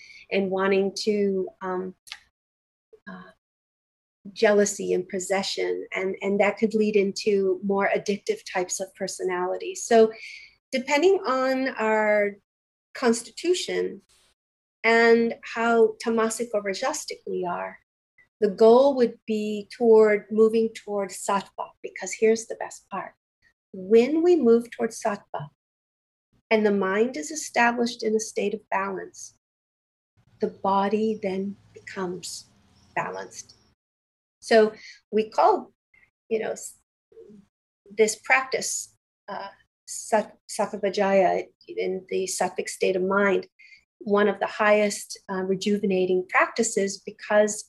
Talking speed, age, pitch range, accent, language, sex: 110 wpm, 40-59, 195-235 Hz, American, English, female